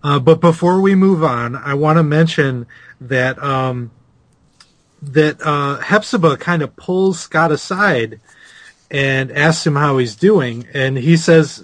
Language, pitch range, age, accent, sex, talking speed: English, 120-155 Hz, 30-49, American, male, 150 wpm